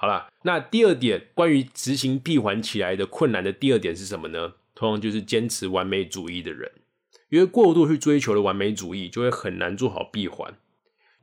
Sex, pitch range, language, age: male, 100-140 Hz, Chinese, 20-39